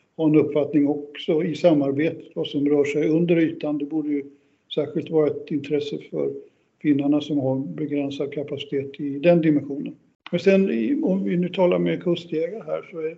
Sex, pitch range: male, 140-165 Hz